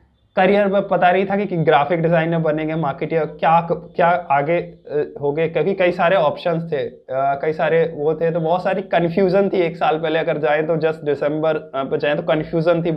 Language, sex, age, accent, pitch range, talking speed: Hindi, male, 20-39, native, 155-185 Hz, 205 wpm